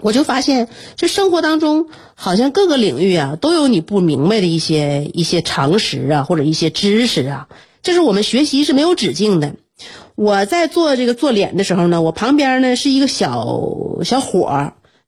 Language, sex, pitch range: Chinese, female, 185-270 Hz